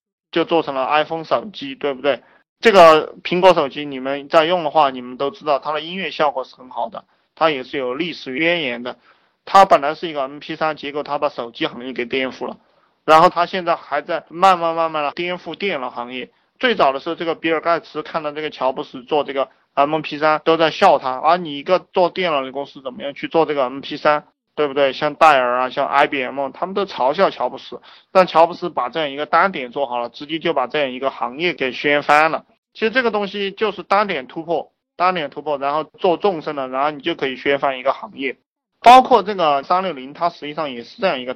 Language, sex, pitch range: Chinese, male, 140-175 Hz